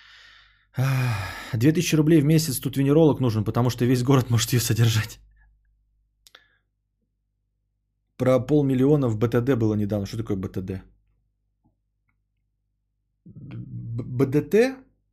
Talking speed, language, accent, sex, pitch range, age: 95 wpm, Russian, native, male, 105-140 Hz, 30-49